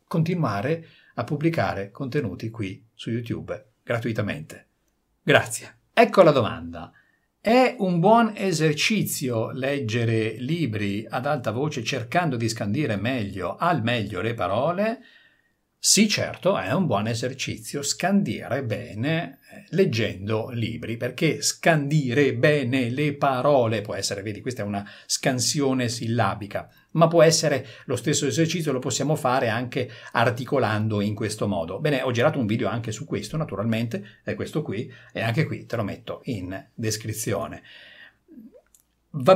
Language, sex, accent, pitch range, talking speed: Italian, male, native, 110-150 Hz, 135 wpm